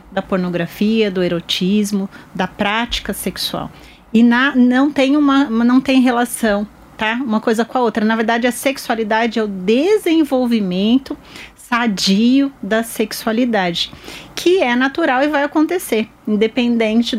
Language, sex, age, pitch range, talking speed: Portuguese, female, 30-49, 205-250 Hz, 135 wpm